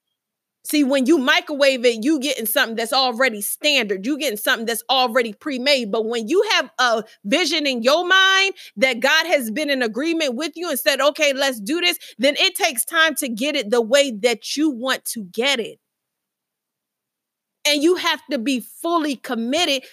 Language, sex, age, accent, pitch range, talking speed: English, female, 30-49, American, 260-355 Hz, 185 wpm